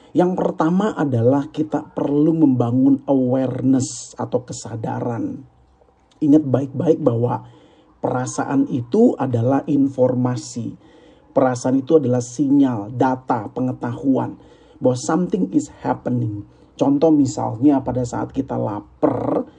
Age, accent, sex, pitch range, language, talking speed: 40-59, native, male, 130-190 Hz, Indonesian, 100 wpm